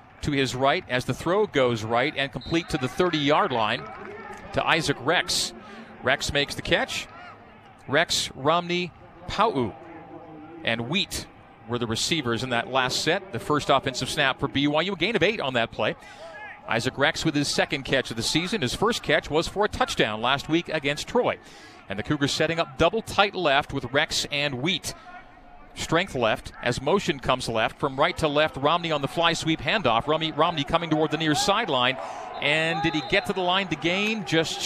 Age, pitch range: 40-59, 130-175 Hz